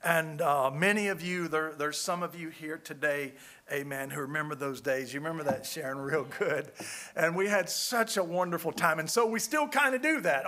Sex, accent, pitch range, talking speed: male, American, 145-190 Hz, 210 wpm